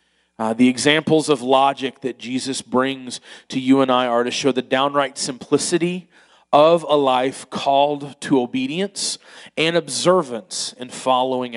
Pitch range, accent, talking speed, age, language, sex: 130-165 Hz, American, 145 wpm, 40-59, English, male